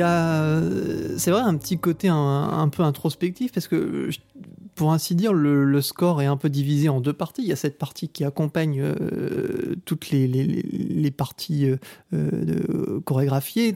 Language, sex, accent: French, male, French